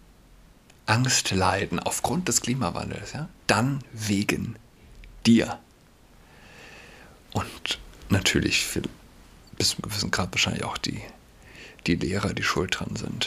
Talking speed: 120 wpm